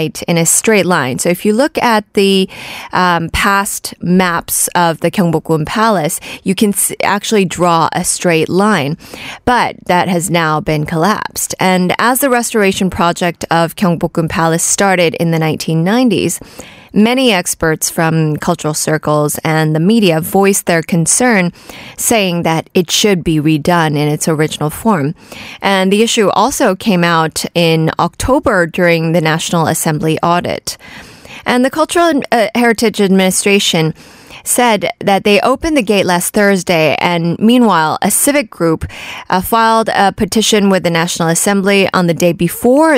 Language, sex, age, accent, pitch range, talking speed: English, female, 20-39, American, 160-205 Hz, 150 wpm